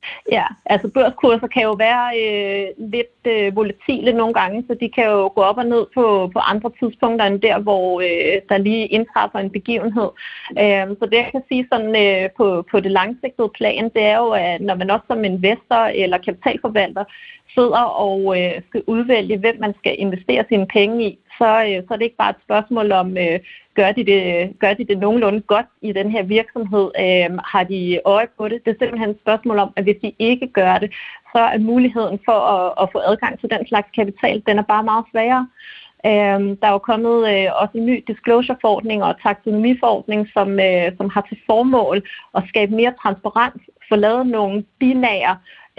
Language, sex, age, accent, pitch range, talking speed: Danish, female, 30-49, native, 200-235 Hz, 195 wpm